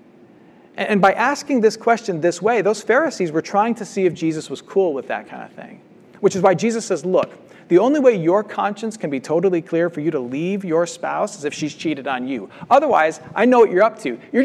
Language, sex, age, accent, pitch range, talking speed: English, male, 40-59, American, 150-205 Hz, 235 wpm